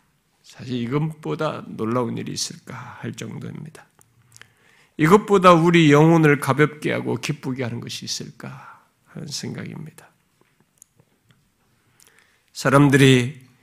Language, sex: Korean, male